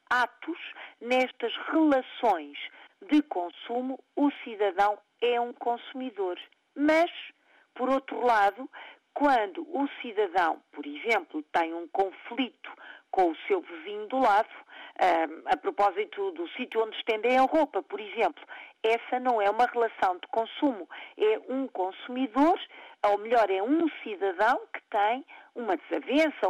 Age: 50-69